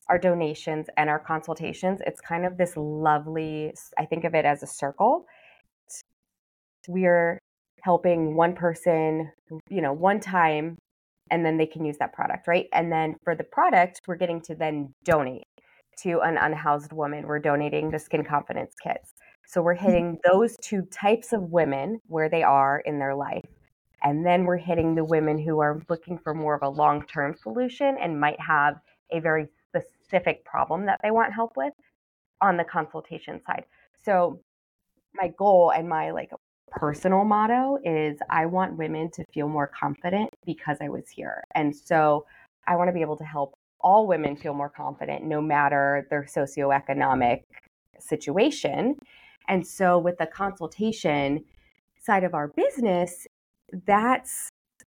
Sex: female